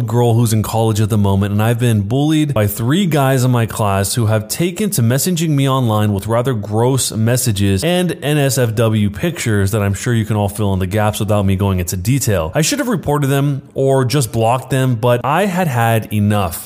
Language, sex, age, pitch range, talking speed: English, male, 20-39, 110-145 Hz, 215 wpm